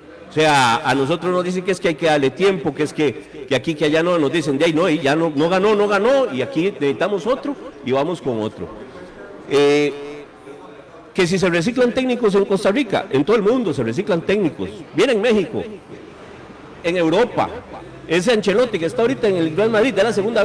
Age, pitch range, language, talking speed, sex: 50-69, 150-205 Hz, Spanish, 215 wpm, male